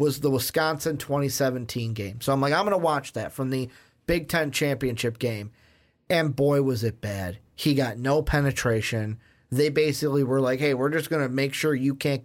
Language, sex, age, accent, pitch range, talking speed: English, male, 30-49, American, 135-190 Hz, 200 wpm